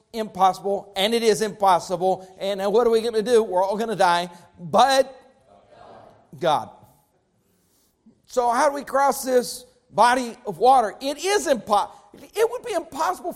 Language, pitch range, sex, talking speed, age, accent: English, 200-295 Hz, male, 155 wpm, 50-69, American